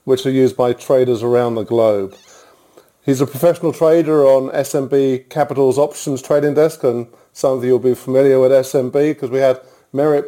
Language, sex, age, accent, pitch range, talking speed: English, male, 50-69, British, 120-145 Hz, 180 wpm